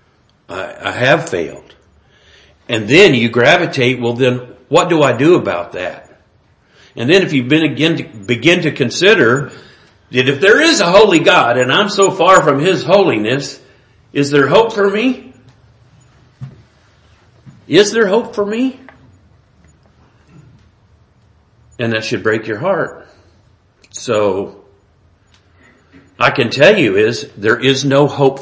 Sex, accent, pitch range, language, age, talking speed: male, American, 105-150 Hz, English, 50-69, 135 wpm